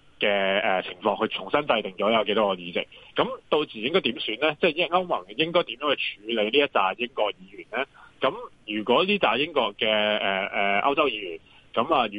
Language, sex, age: Chinese, male, 30-49